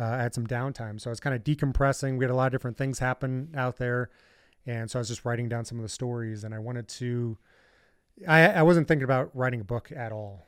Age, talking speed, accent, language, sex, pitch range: 30-49, 265 wpm, American, English, male, 115-130 Hz